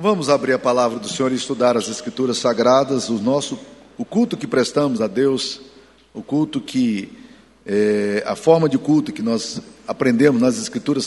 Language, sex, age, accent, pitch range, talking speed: Portuguese, male, 50-69, Brazilian, 125-180 Hz, 175 wpm